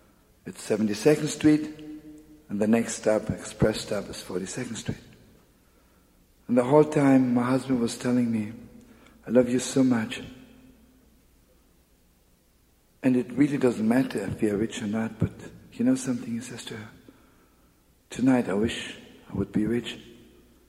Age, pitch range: 50-69, 80-130 Hz